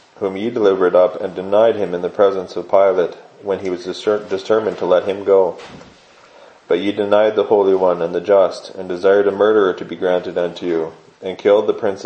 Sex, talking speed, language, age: male, 210 wpm, English, 30-49